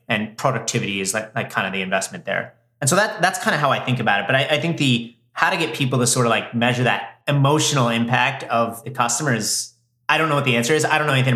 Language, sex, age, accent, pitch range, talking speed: English, male, 30-49, American, 115-140 Hz, 275 wpm